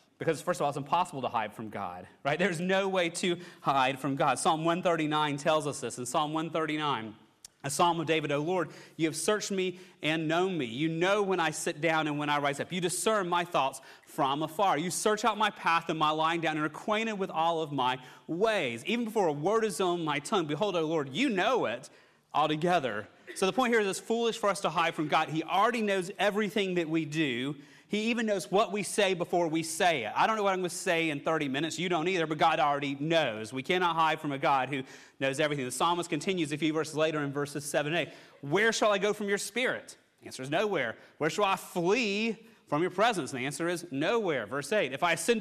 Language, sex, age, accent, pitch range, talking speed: English, male, 30-49, American, 150-190 Hz, 245 wpm